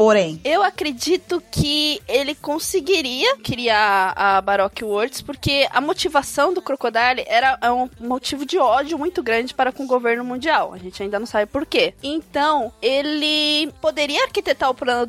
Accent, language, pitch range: Brazilian, Portuguese, 240-330 Hz